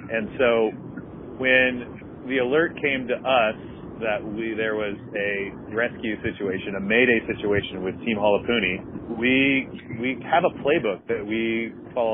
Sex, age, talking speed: male, 40-59, 145 wpm